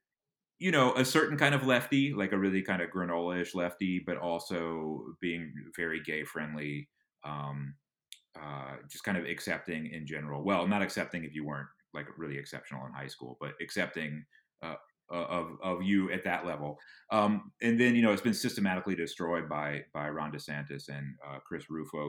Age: 30-49